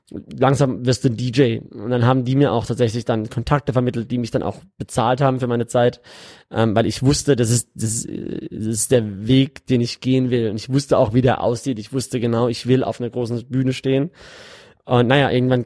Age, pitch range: 20-39, 120-135 Hz